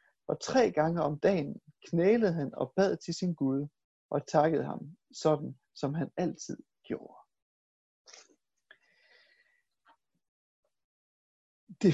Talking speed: 105 wpm